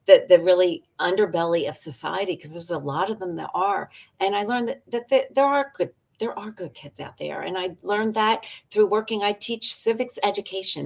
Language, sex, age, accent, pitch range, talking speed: English, female, 50-69, American, 155-210 Hz, 215 wpm